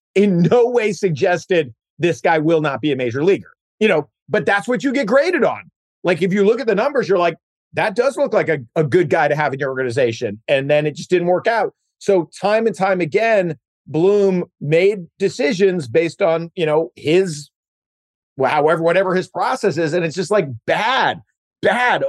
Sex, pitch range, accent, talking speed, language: male, 155-220 Hz, American, 205 wpm, English